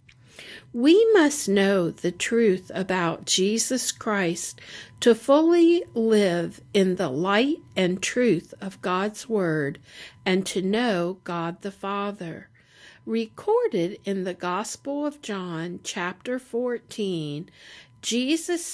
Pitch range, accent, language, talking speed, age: 170-230 Hz, American, English, 110 wpm, 60-79